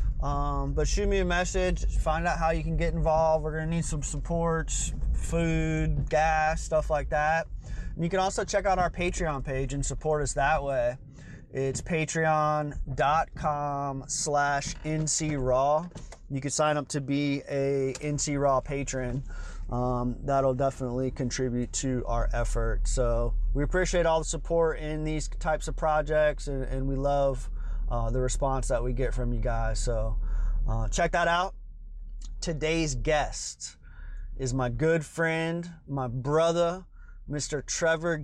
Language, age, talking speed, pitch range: English, 30-49, 150 wpm, 130-160 Hz